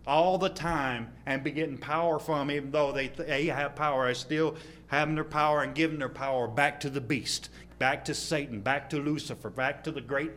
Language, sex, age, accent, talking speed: English, male, 40-59, American, 215 wpm